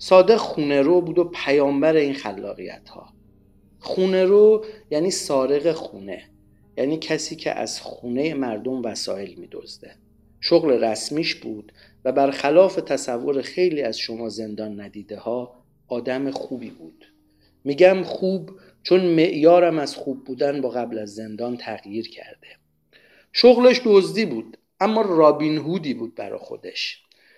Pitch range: 125-180 Hz